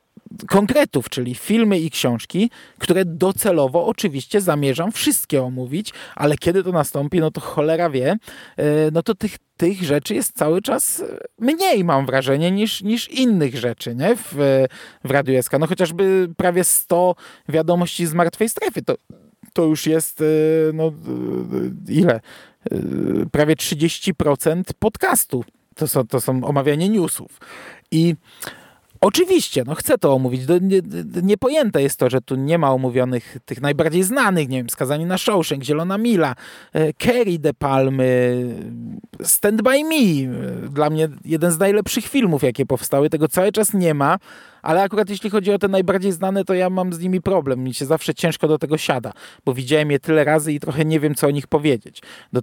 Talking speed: 160 wpm